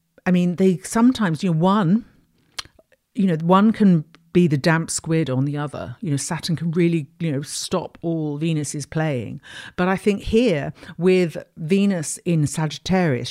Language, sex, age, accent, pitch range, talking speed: English, female, 50-69, British, 145-175 Hz, 170 wpm